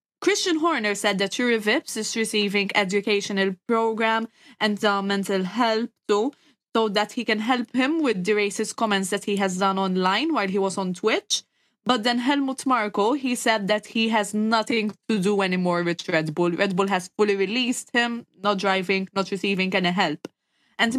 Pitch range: 195-230 Hz